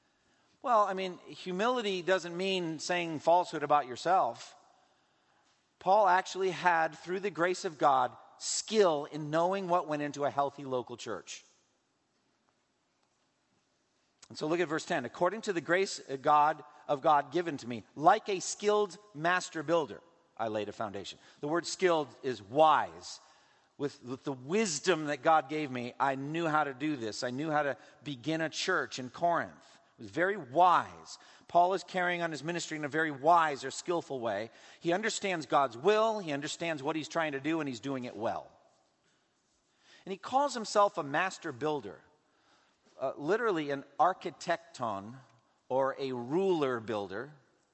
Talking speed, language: 160 wpm, English